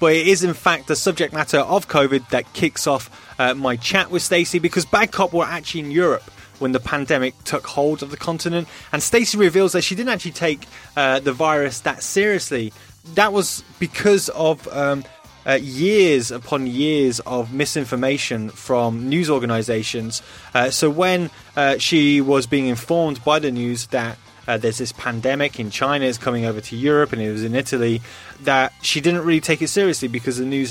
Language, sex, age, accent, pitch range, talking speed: English, male, 20-39, British, 125-165 Hz, 190 wpm